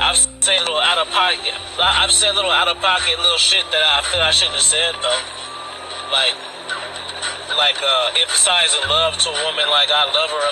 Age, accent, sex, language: 30-49, American, male, English